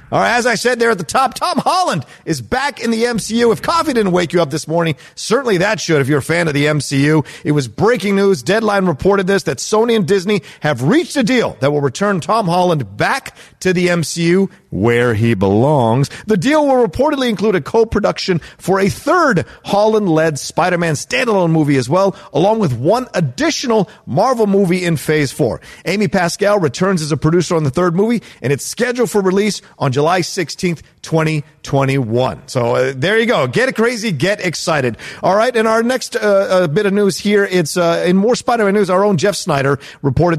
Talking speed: 200 wpm